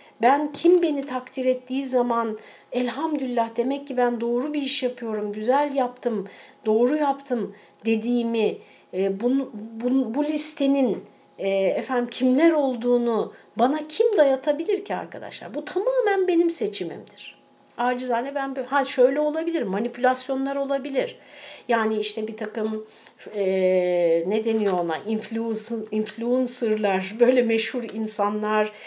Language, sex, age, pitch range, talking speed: Turkish, female, 60-79, 215-260 Hz, 120 wpm